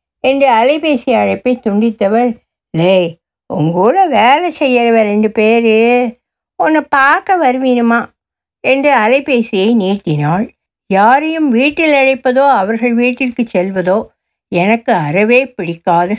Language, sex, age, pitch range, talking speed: Tamil, female, 60-79, 200-270 Hz, 95 wpm